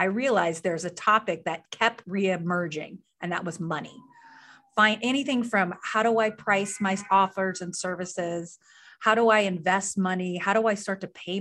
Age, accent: 30-49, American